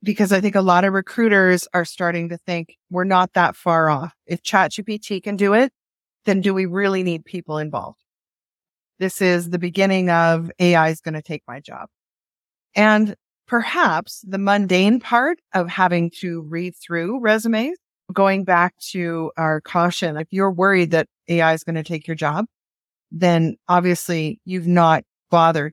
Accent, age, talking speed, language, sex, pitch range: American, 30-49, 170 wpm, English, female, 170-210 Hz